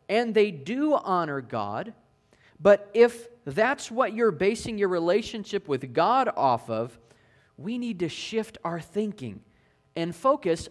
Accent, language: American, English